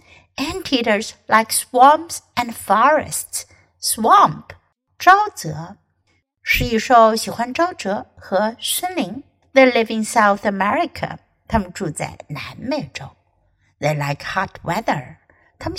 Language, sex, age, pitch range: Chinese, female, 60-79, 180-300 Hz